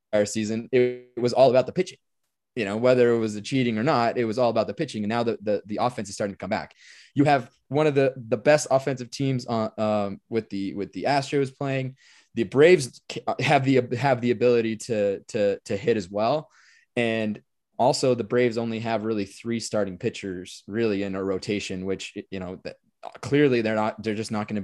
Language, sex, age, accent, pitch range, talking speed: English, male, 20-39, American, 110-140 Hz, 220 wpm